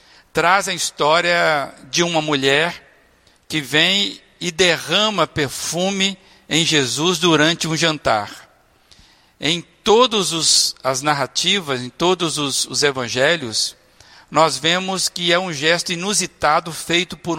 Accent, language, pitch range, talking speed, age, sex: Brazilian, Portuguese, 145-180 Hz, 115 wpm, 60-79, male